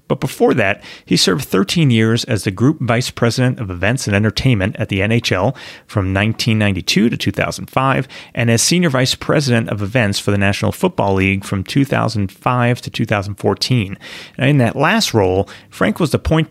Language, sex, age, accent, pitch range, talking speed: English, male, 30-49, American, 100-130 Hz, 170 wpm